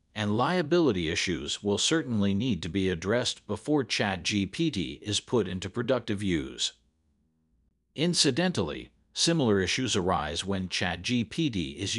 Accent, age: American, 50-69